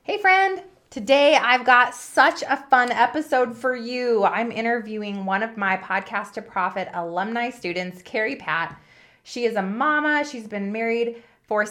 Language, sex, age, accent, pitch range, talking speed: English, female, 20-39, American, 185-250 Hz, 160 wpm